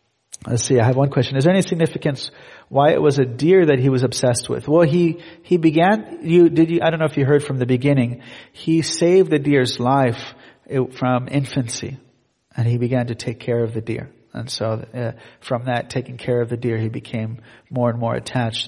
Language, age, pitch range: English, 40-59, 120-155 Hz